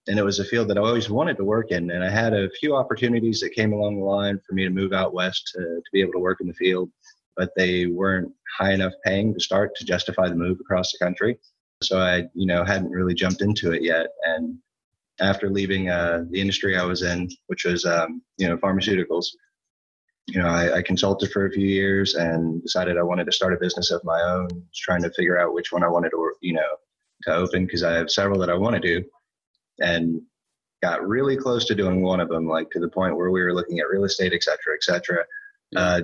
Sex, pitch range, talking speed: male, 85-100 Hz, 240 wpm